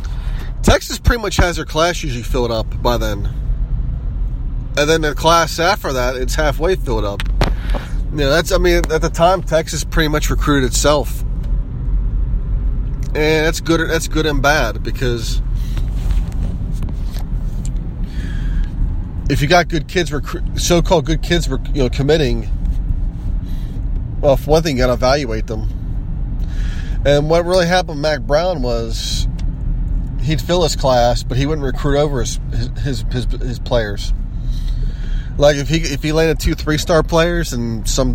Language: English